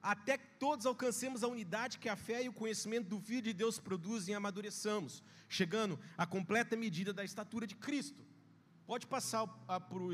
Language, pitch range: Portuguese, 160-250 Hz